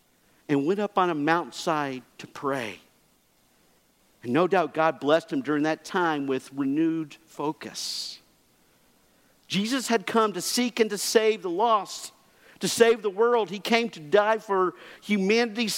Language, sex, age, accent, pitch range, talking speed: English, male, 50-69, American, 185-245 Hz, 150 wpm